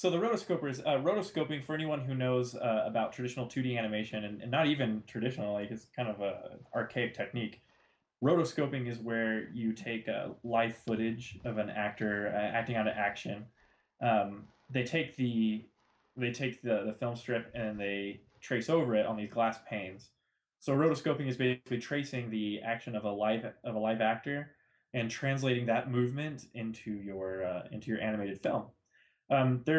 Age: 20-39